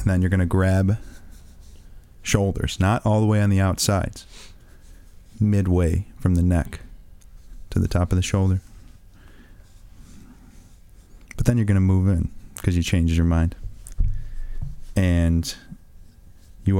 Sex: male